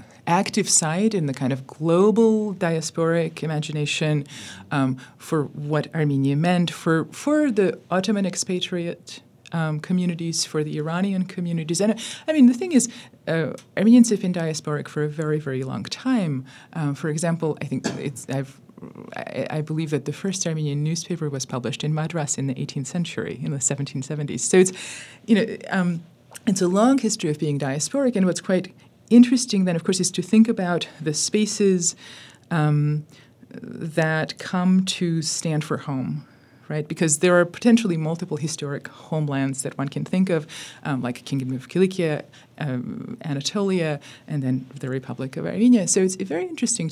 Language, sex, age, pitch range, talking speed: English, female, 30-49, 145-185 Hz, 170 wpm